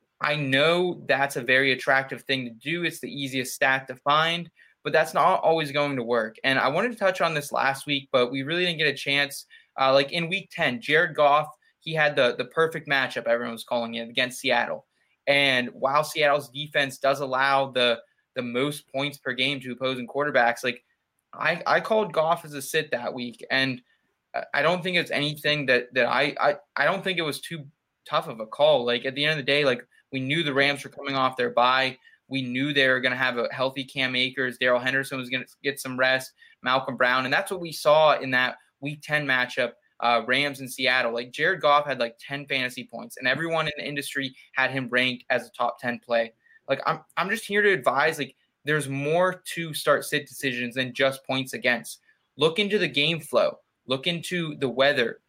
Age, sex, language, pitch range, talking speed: 20-39, male, English, 130-155 Hz, 220 wpm